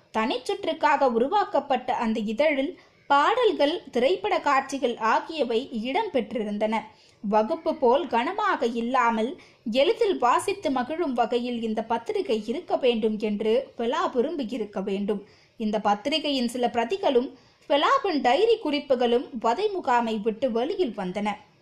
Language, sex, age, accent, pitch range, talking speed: Tamil, female, 20-39, native, 225-315 Hz, 45 wpm